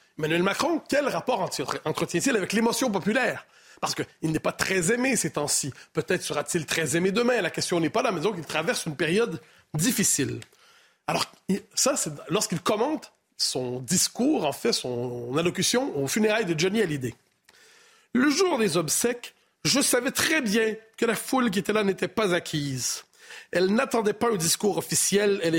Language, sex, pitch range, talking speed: French, male, 170-235 Hz, 170 wpm